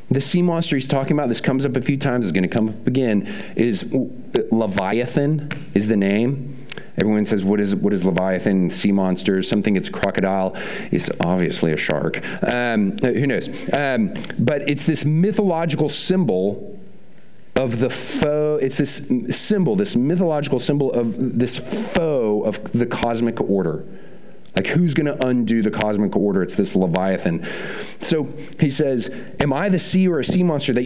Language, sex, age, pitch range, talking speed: English, male, 40-59, 130-205 Hz, 170 wpm